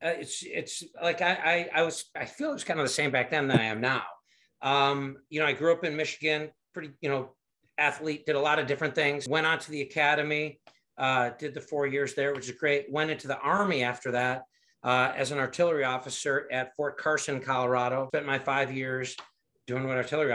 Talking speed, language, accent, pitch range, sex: 225 wpm, English, American, 125-145 Hz, male